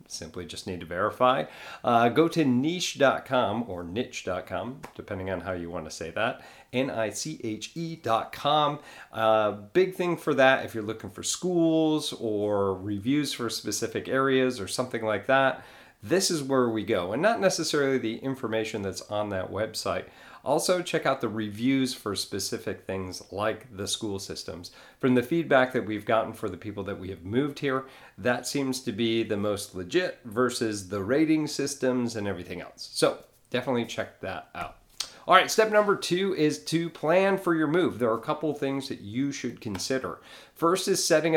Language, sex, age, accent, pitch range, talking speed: English, male, 40-59, American, 105-140 Hz, 175 wpm